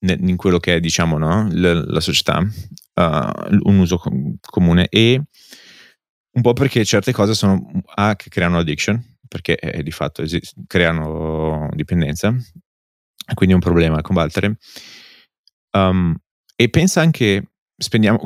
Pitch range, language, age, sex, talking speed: 85-100 Hz, Italian, 30-49, male, 140 wpm